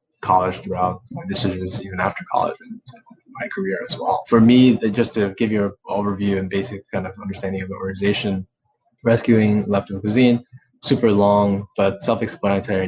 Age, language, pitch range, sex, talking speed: 20-39, English, 95-110 Hz, male, 170 wpm